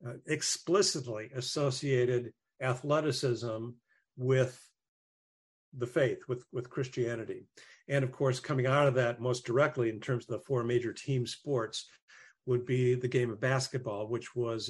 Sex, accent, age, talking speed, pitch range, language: male, American, 50-69, 145 wpm, 120-140 Hz, English